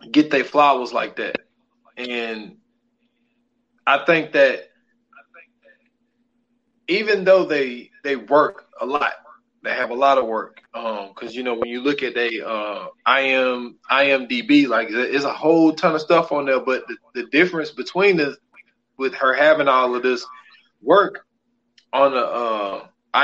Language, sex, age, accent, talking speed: English, male, 20-39, American, 160 wpm